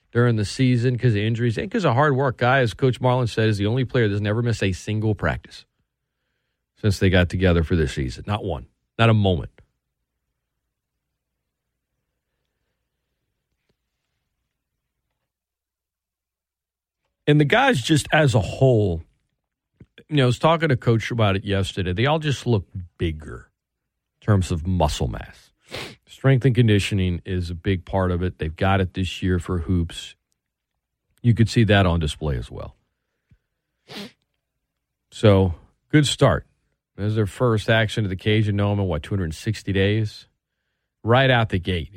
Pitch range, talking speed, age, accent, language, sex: 90-115 Hz, 155 wpm, 40-59, American, English, male